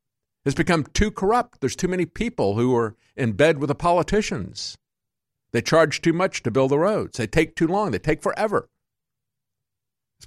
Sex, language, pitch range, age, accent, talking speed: male, English, 110-150 Hz, 50-69, American, 180 wpm